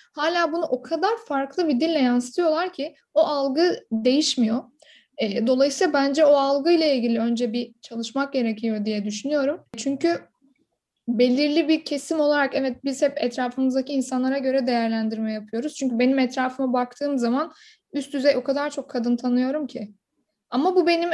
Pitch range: 245-295 Hz